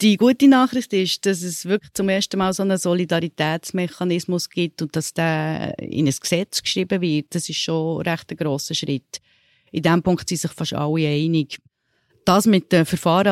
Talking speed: 185 wpm